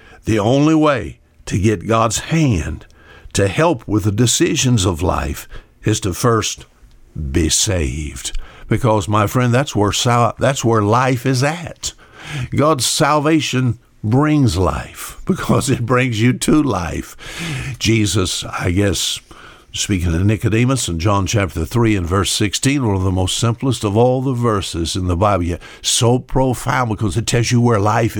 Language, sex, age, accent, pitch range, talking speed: English, male, 60-79, American, 95-125 Hz, 155 wpm